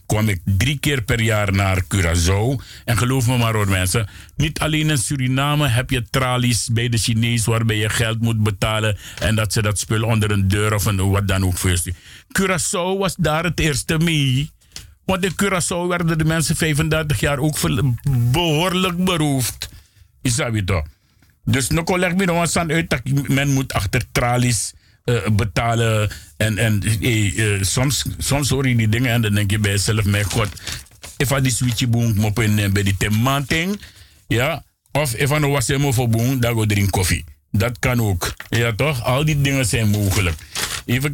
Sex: male